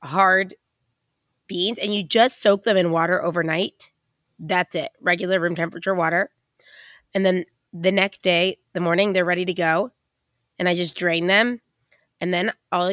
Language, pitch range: English, 175-210 Hz